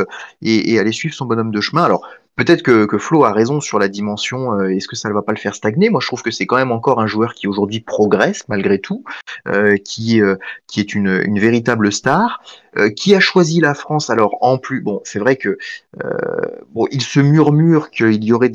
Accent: French